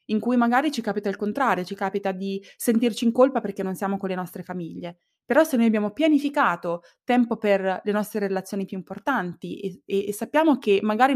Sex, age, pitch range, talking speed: female, 20-39, 185-230 Hz, 200 wpm